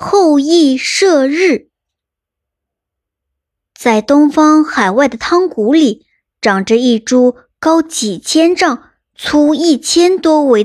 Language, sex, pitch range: Chinese, male, 225-310 Hz